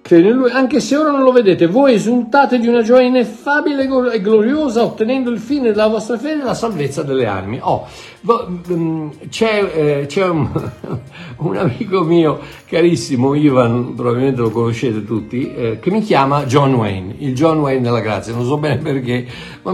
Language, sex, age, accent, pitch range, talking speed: Italian, male, 60-79, native, 130-200 Hz, 160 wpm